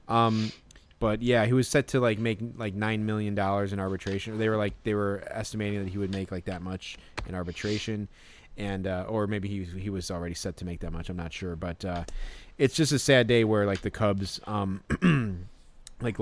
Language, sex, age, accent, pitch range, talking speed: English, male, 20-39, American, 95-115 Hz, 220 wpm